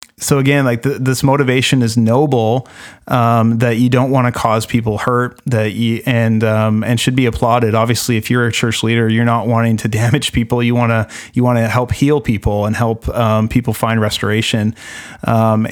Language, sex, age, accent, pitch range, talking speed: English, male, 30-49, American, 115-125 Hz, 200 wpm